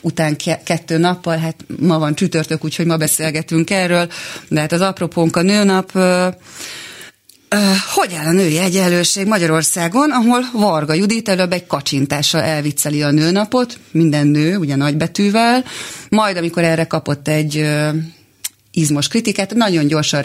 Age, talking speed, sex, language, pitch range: 30-49, 140 wpm, female, Hungarian, 150-185 Hz